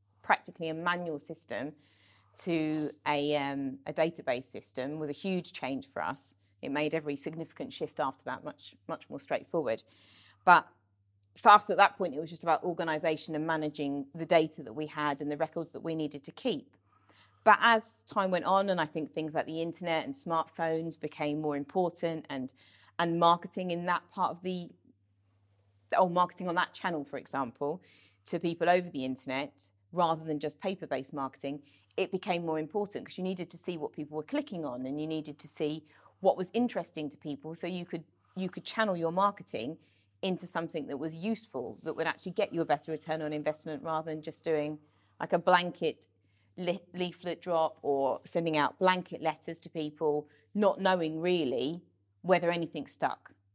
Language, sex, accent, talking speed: English, female, British, 185 wpm